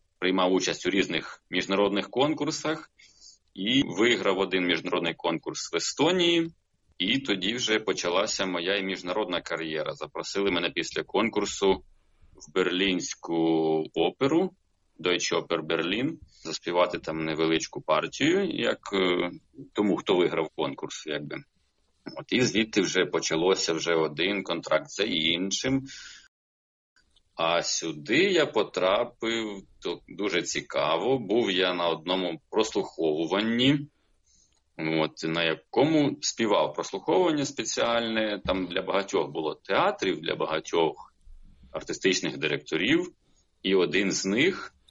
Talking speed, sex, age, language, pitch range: 105 wpm, male, 30-49, Ukrainian, 85-115 Hz